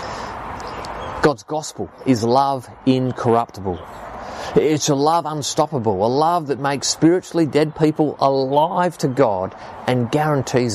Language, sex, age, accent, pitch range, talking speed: English, male, 30-49, Australian, 105-150 Hz, 115 wpm